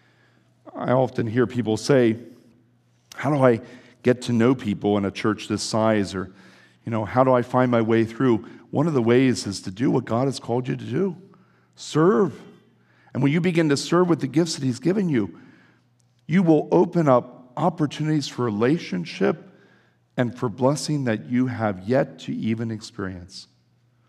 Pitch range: 110-135 Hz